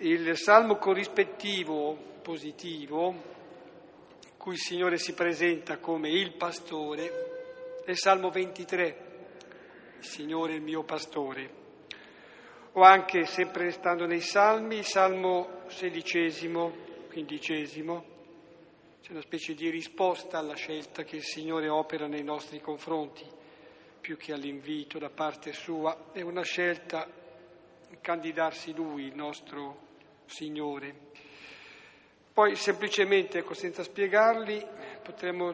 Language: Italian